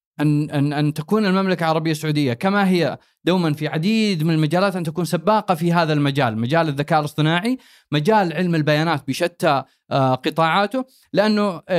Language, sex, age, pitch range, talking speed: Arabic, male, 30-49, 150-185 Hz, 150 wpm